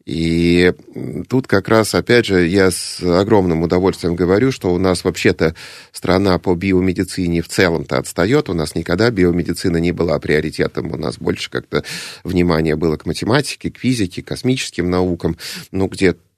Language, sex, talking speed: Russian, male, 160 wpm